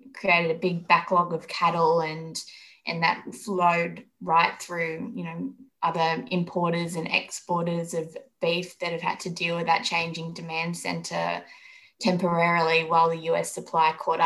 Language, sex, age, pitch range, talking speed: English, female, 20-39, 165-180 Hz, 150 wpm